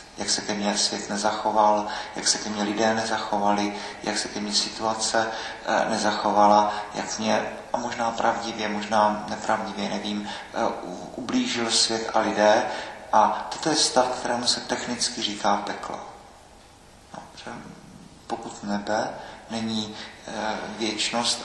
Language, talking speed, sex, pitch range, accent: Czech, 125 wpm, male, 105-115 Hz, native